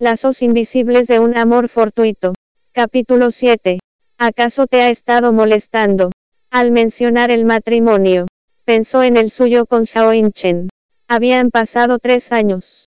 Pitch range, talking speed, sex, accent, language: 225-245 Hz, 130 wpm, female, American, English